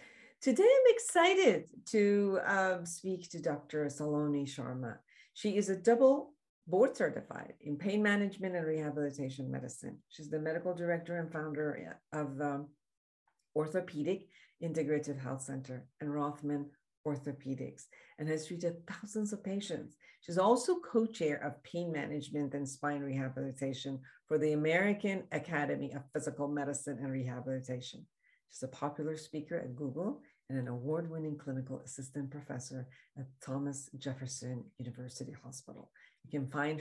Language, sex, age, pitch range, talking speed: English, female, 50-69, 135-180 Hz, 130 wpm